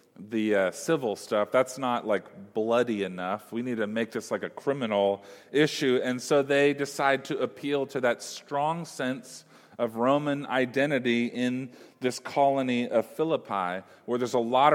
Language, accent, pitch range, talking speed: English, American, 130-180 Hz, 165 wpm